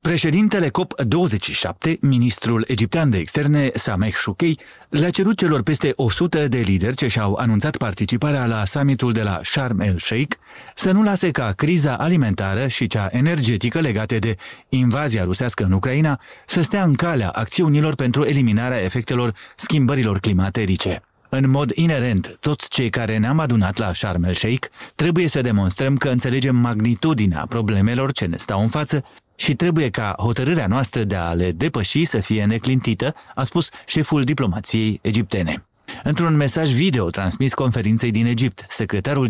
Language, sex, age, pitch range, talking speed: Romanian, male, 30-49, 110-145 Hz, 155 wpm